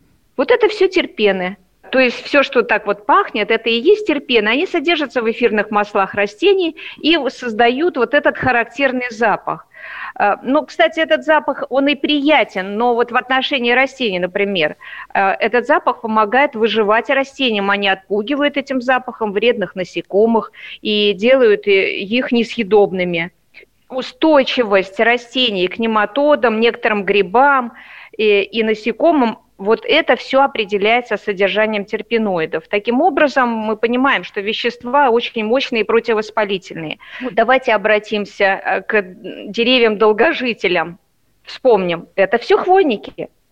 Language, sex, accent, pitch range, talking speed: Russian, female, native, 215-270 Hz, 125 wpm